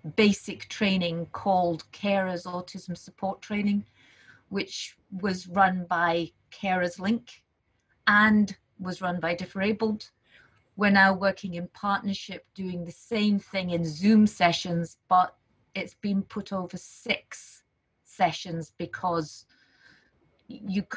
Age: 30-49